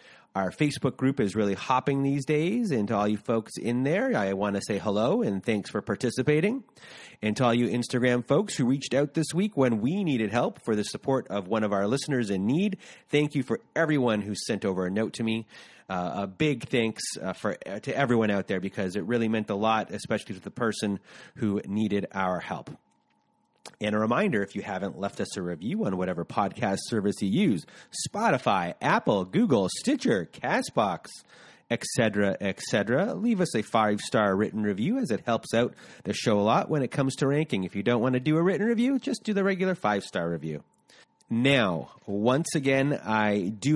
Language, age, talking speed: English, 30-49, 205 wpm